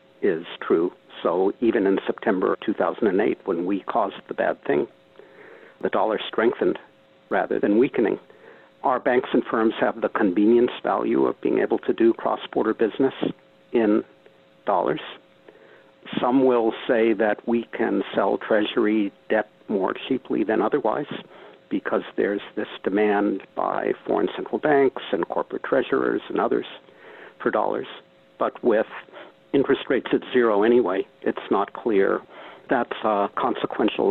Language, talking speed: English, 135 wpm